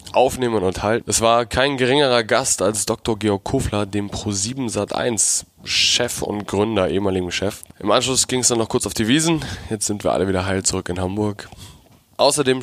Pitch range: 95-115 Hz